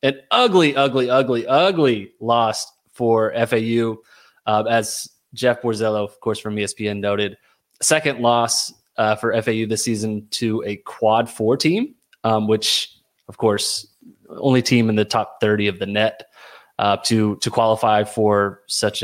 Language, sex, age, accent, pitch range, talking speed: English, male, 20-39, American, 110-130 Hz, 150 wpm